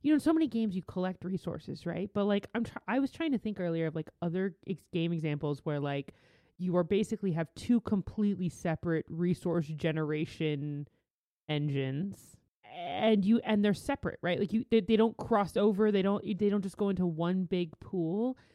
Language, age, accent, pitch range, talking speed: English, 30-49, American, 160-215 Hz, 195 wpm